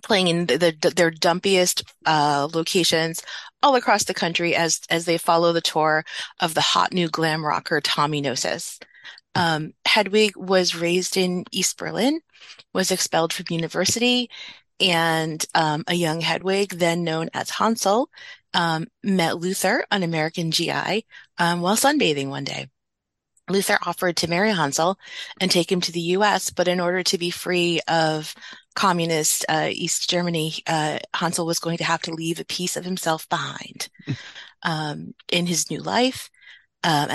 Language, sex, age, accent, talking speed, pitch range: English, female, 30-49, American, 160 wpm, 165-190 Hz